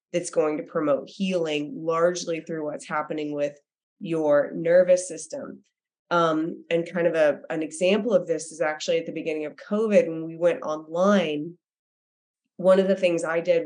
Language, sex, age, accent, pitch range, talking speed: English, female, 20-39, American, 165-190 Hz, 165 wpm